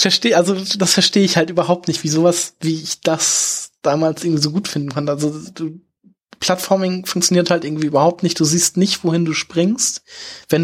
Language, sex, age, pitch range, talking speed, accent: German, male, 20-39, 145-175 Hz, 185 wpm, German